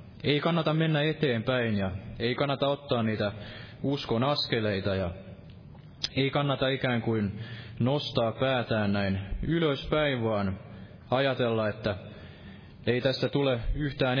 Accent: native